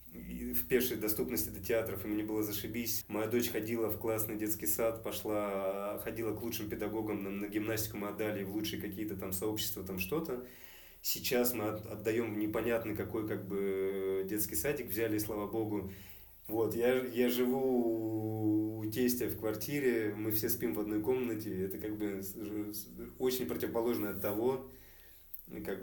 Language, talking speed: Russian, 155 wpm